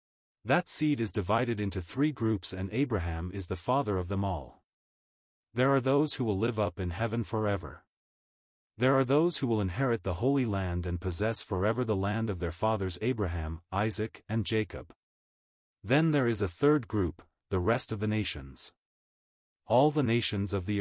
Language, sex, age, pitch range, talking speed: English, male, 30-49, 90-120 Hz, 180 wpm